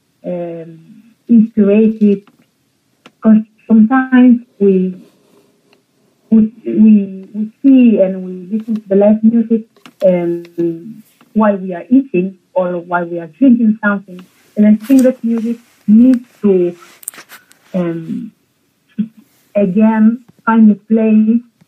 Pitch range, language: 185-230 Hz, English